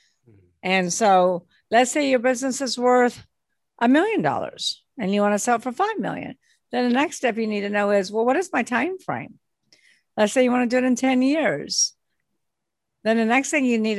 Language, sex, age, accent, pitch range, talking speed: English, female, 50-69, American, 195-255 Hz, 220 wpm